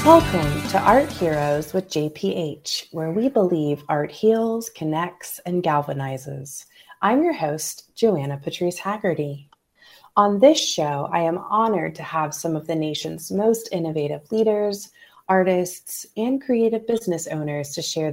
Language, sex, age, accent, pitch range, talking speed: English, female, 30-49, American, 155-215 Hz, 140 wpm